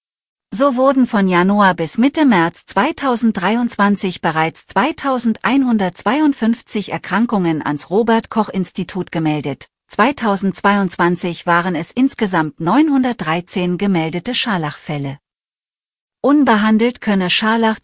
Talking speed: 85 wpm